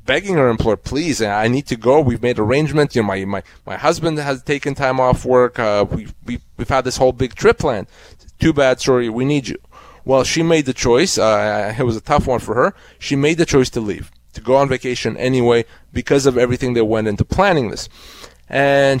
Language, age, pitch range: English, 30-49, 115-145 Hz